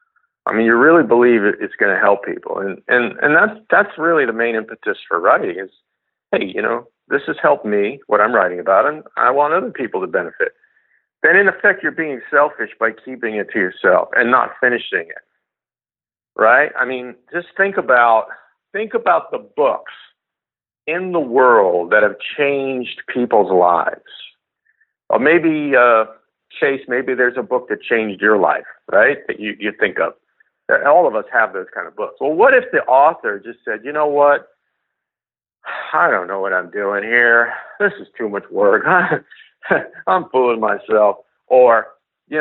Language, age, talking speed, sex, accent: English, 50-69, 180 wpm, male, American